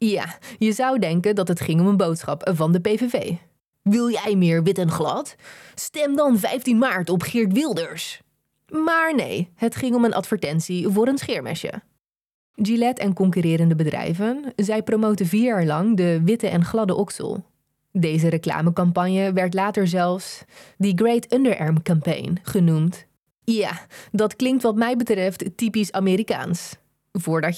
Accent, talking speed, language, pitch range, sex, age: Dutch, 150 wpm, Dutch, 170-230 Hz, female, 20-39